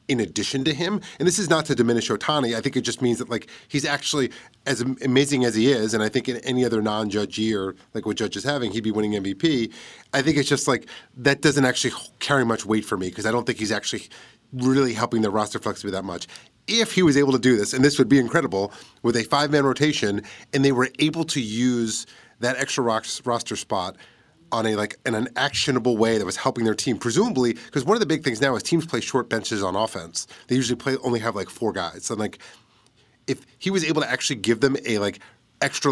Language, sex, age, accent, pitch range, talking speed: English, male, 30-49, American, 110-135 Hz, 235 wpm